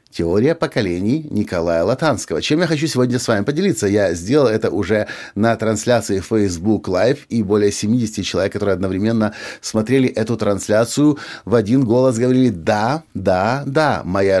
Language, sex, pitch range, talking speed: Russian, male, 105-135 Hz, 150 wpm